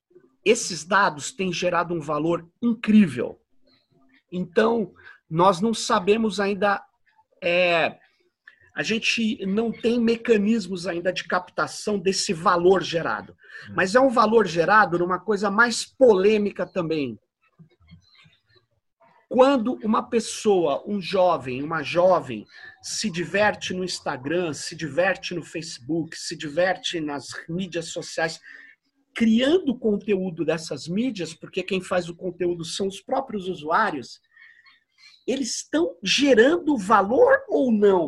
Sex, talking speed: male, 115 wpm